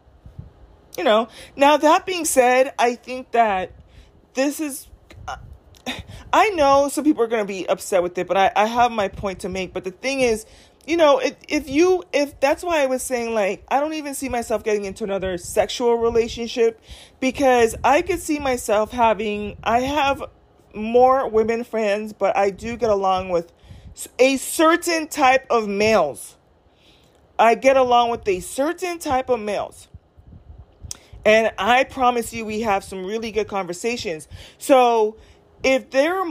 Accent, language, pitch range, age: American, English, 205-270 Hz, 30-49